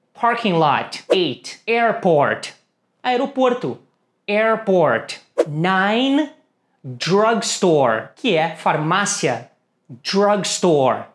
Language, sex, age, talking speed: English, male, 30-49, 65 wpm